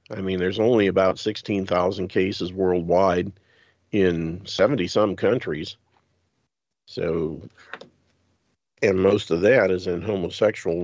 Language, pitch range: English, 90-105 Hz